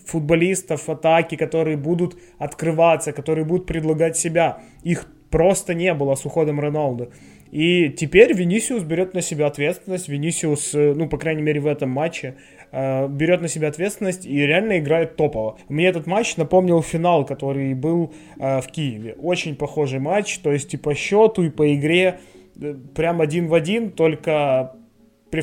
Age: 20-39